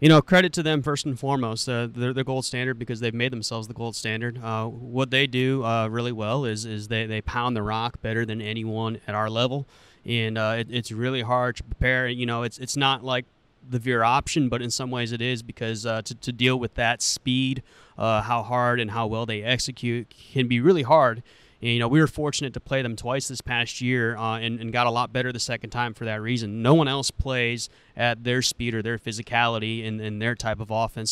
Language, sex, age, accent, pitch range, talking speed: English, male, 30-49, American, 115-130 Hz, 240 wpm